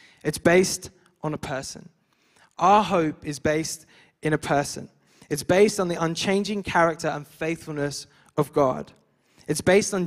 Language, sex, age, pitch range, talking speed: English, male, 10-29, 160-195 Hz, 150 wpm